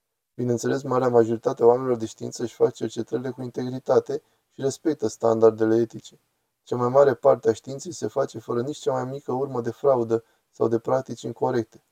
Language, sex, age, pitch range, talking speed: Romanian, male, 20-39, 110-140 Hz, 180 wpm